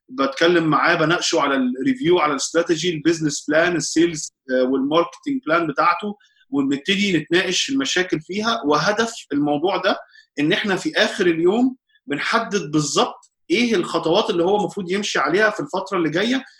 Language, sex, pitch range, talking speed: Arabic, male, 160-215 Hz, 135 wpm